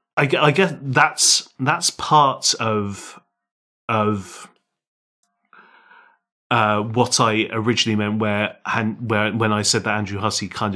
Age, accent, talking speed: 30-49, British, 115 wpm